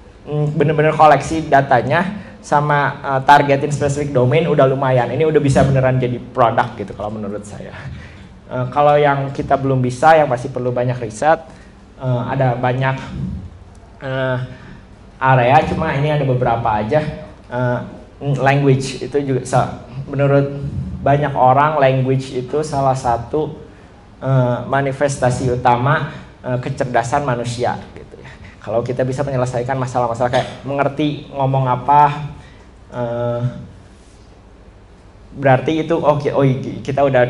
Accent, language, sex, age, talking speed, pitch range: native, Indonesian, male, 20-39, 120 wpm, 115-140 Hz